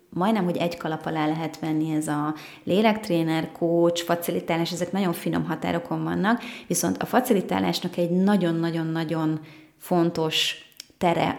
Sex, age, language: female, 30-49, Hungarian